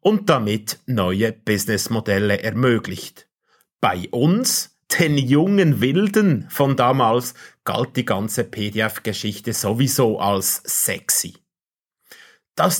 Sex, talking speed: male, 95 wpm